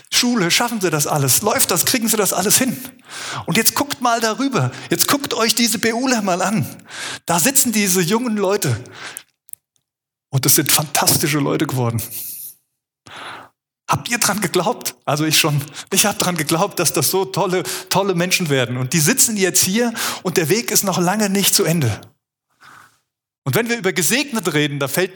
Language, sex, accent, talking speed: German, male, German, 180 wpm